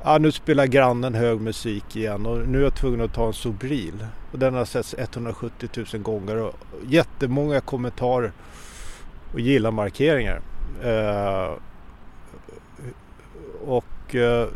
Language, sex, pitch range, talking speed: English, male, 105-135 Hz, 120 wpm